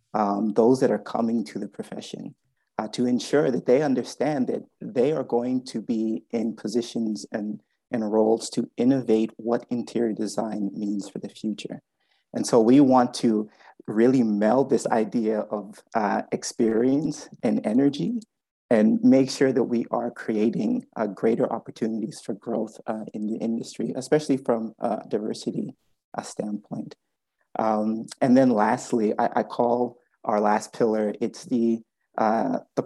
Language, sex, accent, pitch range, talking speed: English, male, American, 110-125 Hz, 150 wpm